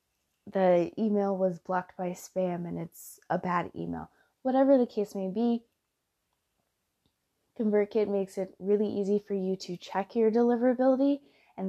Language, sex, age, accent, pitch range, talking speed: English, female, 20-39, American, 180-210 Hz, 145 wpm